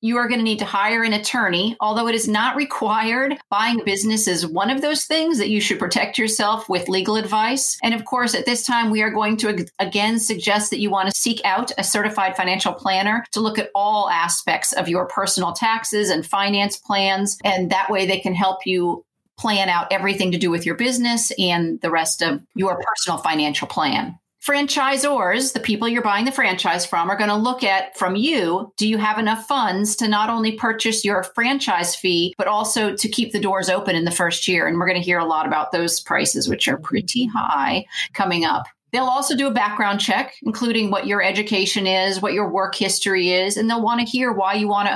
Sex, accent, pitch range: female, American, 190-230 Hz